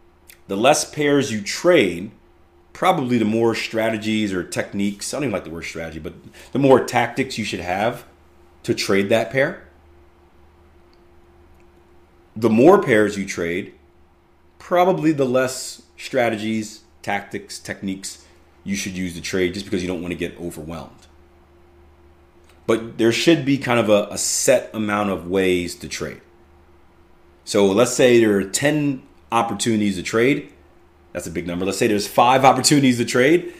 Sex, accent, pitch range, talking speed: male, American, 85-115 Hz, 155 wpm